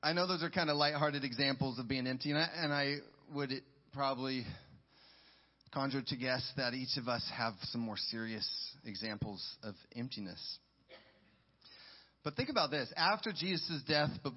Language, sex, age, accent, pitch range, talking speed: English, male, 30-49, American, 135-175 Hz, 155 wpm